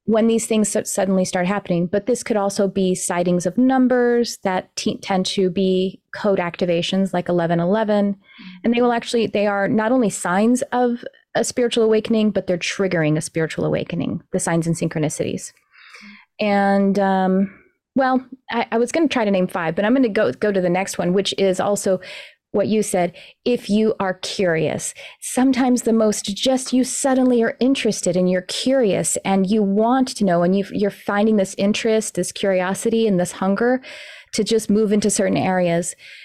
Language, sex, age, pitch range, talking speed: English, female, 30-49, 185-225 Hz, 185 wpm